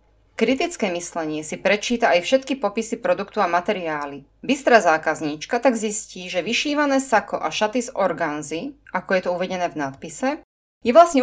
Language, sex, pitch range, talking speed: Slovak, female, 160-235 Hz, 155 wpm